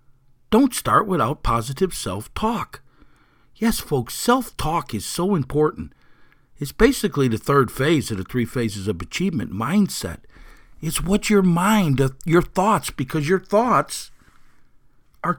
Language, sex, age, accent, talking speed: English, male, 50-69, American, 130 wpm